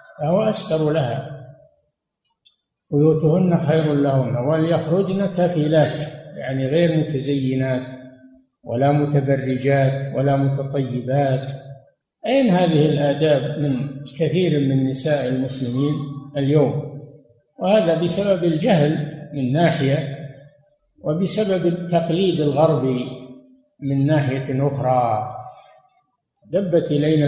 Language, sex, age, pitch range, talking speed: Arabic, male, 60-79, 135-175 Hz, 80 wpm